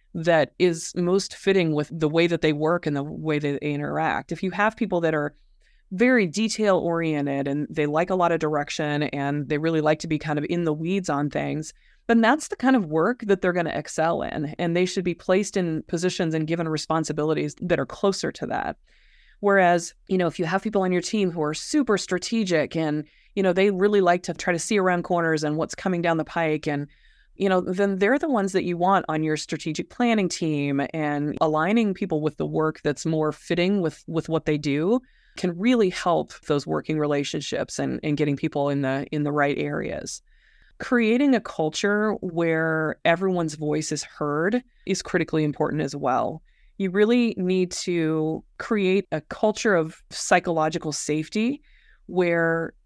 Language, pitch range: English, 155-195 Hz